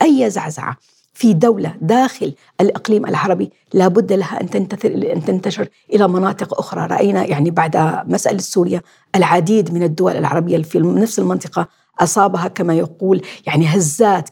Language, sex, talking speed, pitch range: Arabic, female, 135 wpm, 170-210 Hz